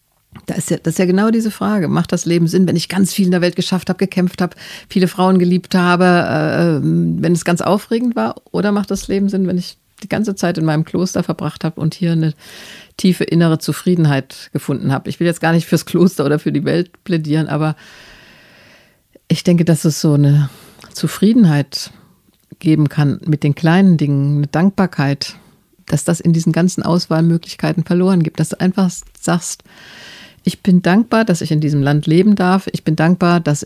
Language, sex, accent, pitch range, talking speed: German, female, German, 155-185 Hz, 195 wpm